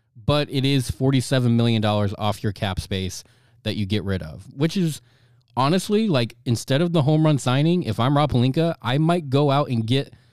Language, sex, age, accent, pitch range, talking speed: English, male, 20-39, American, 115-135 Hz, 190 wpm